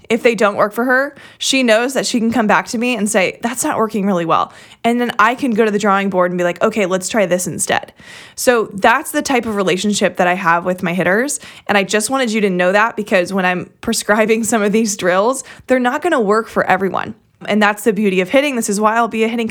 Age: 20-39